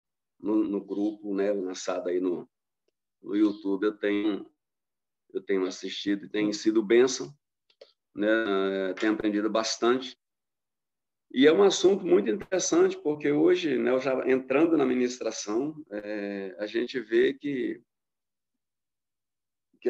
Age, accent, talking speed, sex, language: 40-59, Brazilian, 115 wpm, male, Portuguese